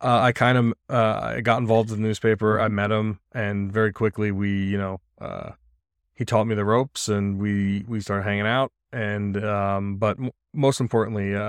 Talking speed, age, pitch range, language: 195 wpm, 20-39, 95-110 Hz, English